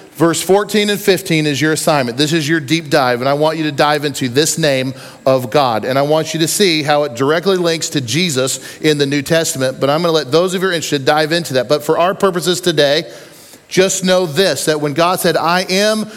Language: English